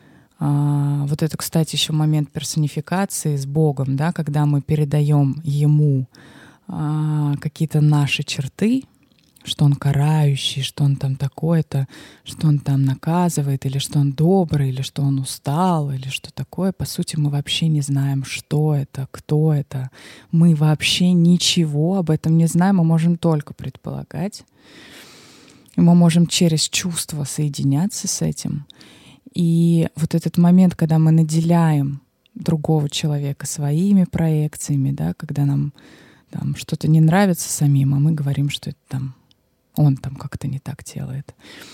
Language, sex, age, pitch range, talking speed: Russian, female, 20-39, 140-165 Hz, 140 wpm